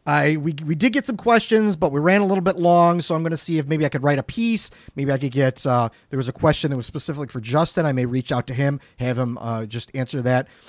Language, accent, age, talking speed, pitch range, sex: English, American, 40-59, 290 wpm, 115-155 Hz, male